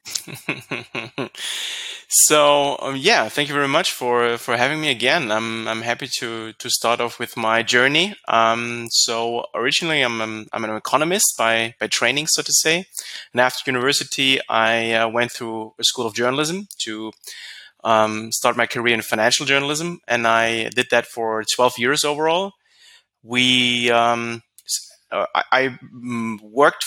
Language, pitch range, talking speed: English, 115-140 Hz, 150 wpm